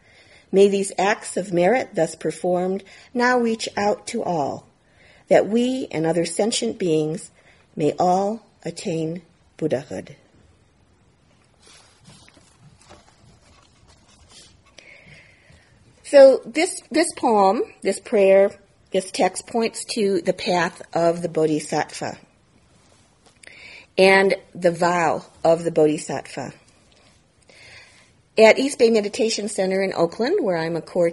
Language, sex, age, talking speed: English, female, 50-69, 105 wpm